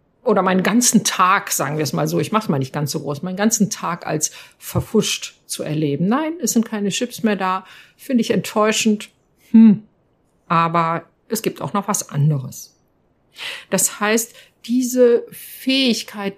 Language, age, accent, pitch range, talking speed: German, 60-79, German, 175-215 Hz, 170 wpm